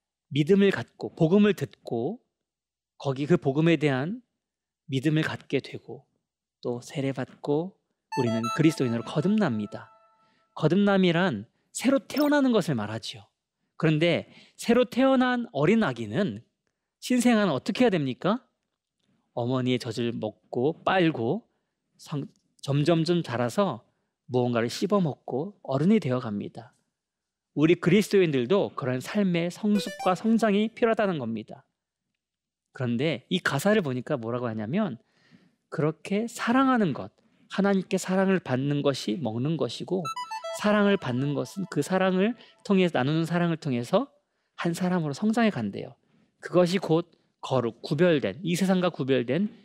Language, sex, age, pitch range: Korean, male, 40-59, 130-205 Hz